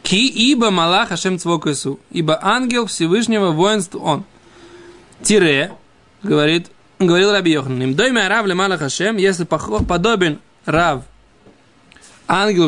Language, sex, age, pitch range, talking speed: Russian, male, 20-39, 155-215 Hz, 100 wpm